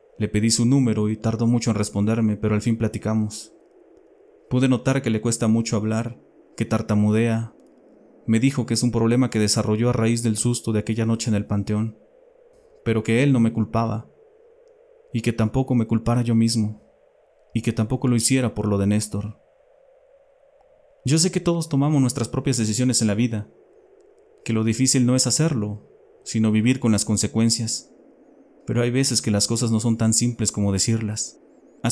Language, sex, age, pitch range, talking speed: Spanish, male, 30-49, 110-130 Hz, 180 wpm